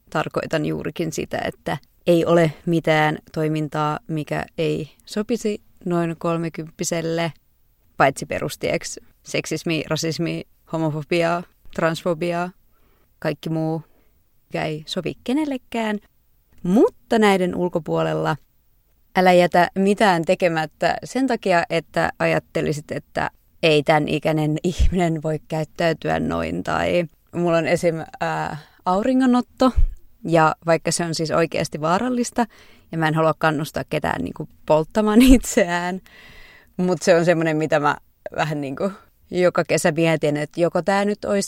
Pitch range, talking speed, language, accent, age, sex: 160-190 Hz, 115 wpm, Finnish, native, 20-39, female